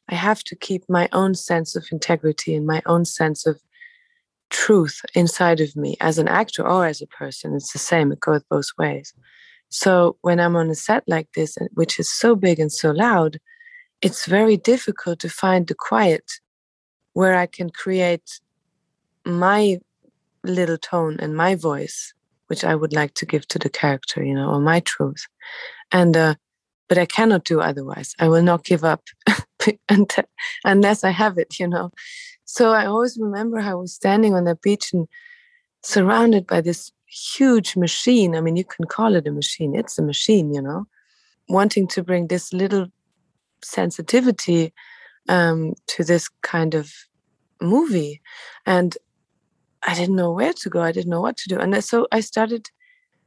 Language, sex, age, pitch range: English, female, 30-49, 165-215 Hz